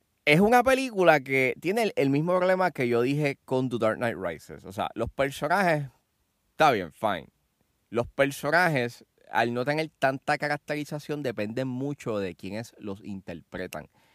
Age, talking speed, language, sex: 20-39, 155 wpm, Spanish, male